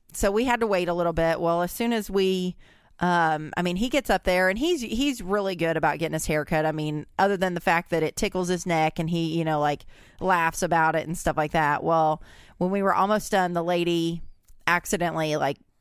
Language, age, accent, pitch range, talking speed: English, 30-49, American, 160-195 Hz, 235 wpm